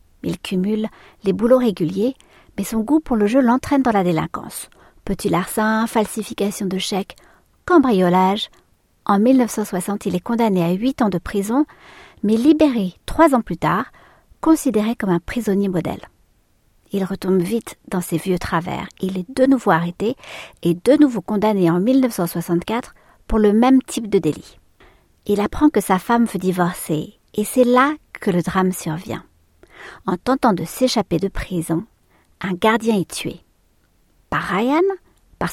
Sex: female